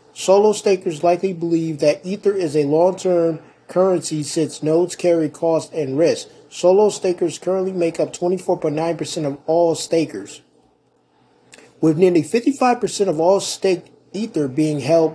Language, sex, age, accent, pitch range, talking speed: English, male, 20-39, American, 155-185 Hz, 135 wpm